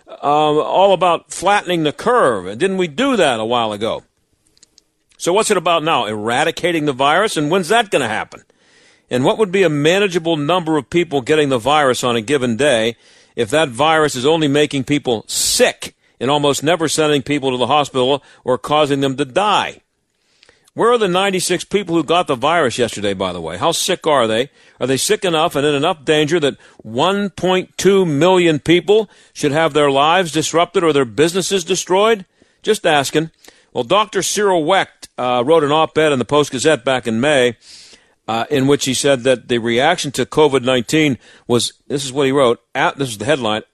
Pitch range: 135-180 Hz